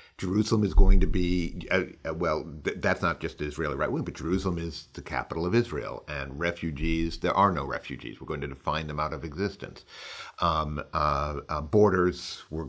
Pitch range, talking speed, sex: 80-105 Hz, 200 wpm, male